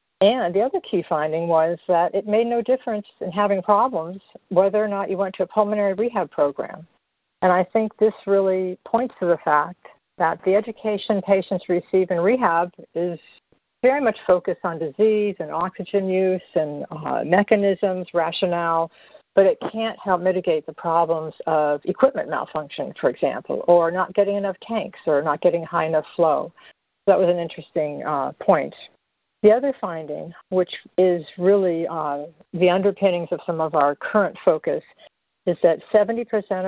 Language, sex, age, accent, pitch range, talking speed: English, female, 50-69, American, 170-205 Hz, 165 wpm